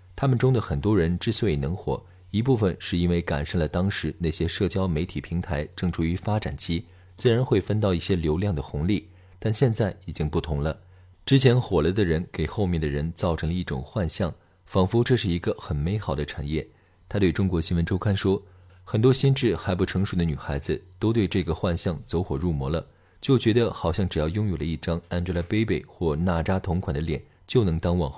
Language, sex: Chinese, male